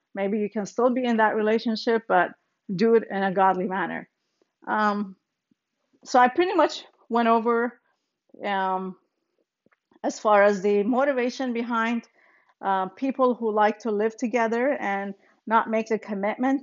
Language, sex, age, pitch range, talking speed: English, female, 40-59, 195-250 Hz, 150 wpm